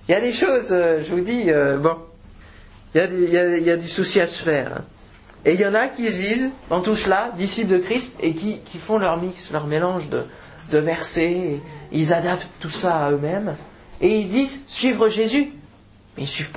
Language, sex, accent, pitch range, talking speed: French, male, French, 155-215 Hz, 210 wpm